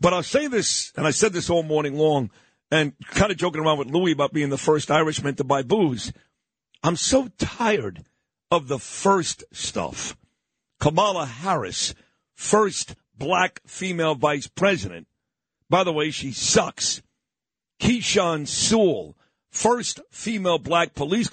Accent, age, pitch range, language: American, 50-69, 155-195 Hz, English